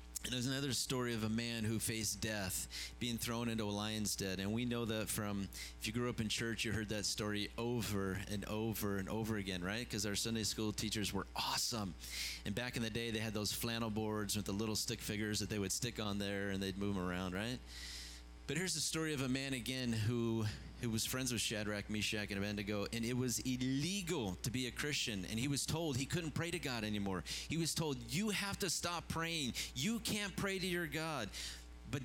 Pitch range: 100-150 Hz